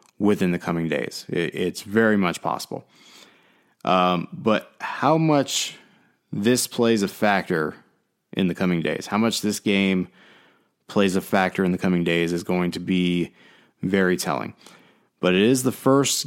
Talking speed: 155 wpm